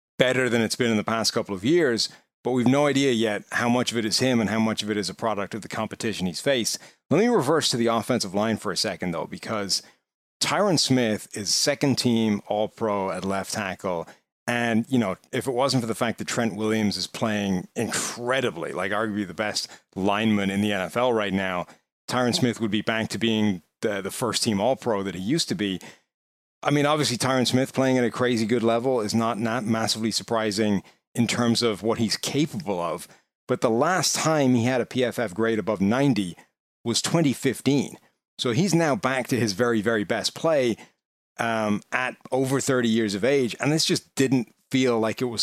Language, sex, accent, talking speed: English, male, American, 205 wpm